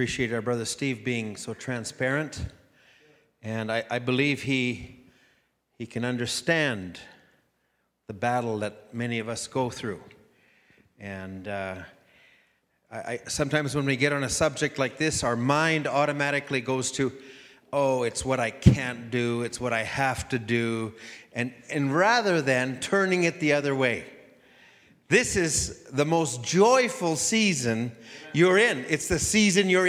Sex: male